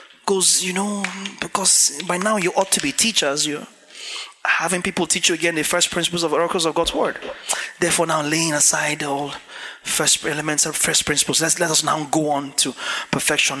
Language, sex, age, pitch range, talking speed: English, male, 30-49, 165-240 Hz, 195 wpm